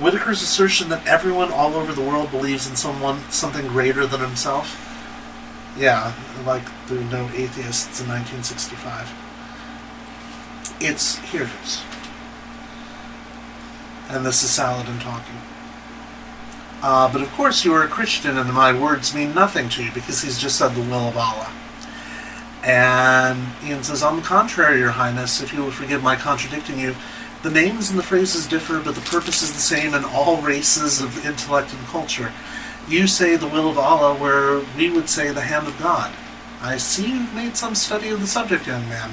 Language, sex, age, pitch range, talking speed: English, male, 40-59, 130-195 Hz, 175 wpm